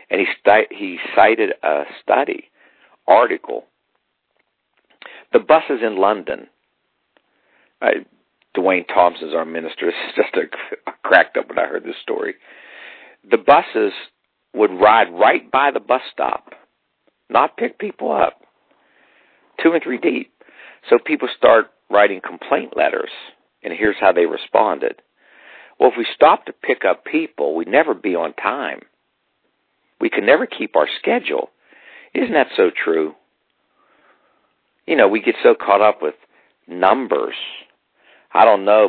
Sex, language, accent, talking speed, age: male, English, American, 135 wpm, 50-69